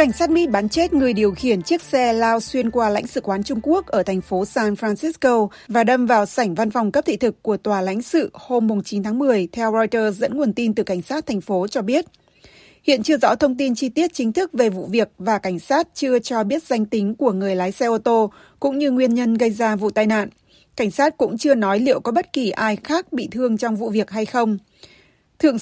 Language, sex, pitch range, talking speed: Vietnamese, female, 205-265 Hz, 250 wpm